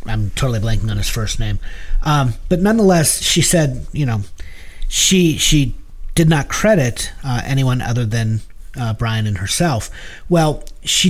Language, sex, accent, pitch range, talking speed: English, male, American, 105-145 Hz, 155 wpm